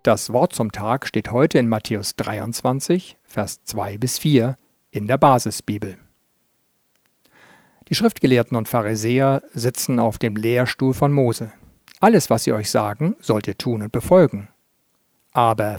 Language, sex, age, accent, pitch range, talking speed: German, male, 50-69, German, 110-140 Hz, 140 wpm